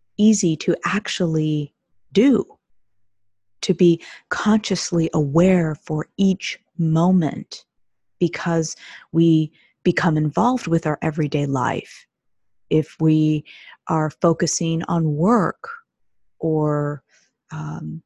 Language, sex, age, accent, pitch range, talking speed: English, female, 30-49, American, 145-175 Hz, 90 wpm